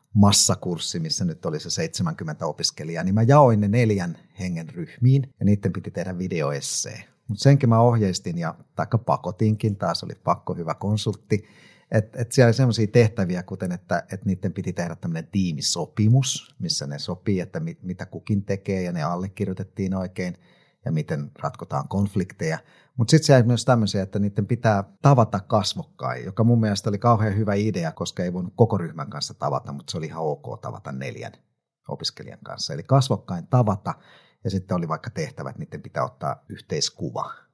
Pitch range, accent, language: 90-120 Hz, native, Finnish